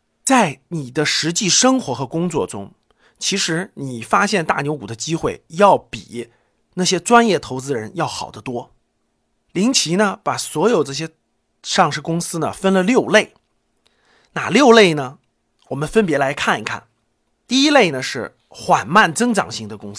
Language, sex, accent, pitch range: Chinese, male, native, 135-215 Hz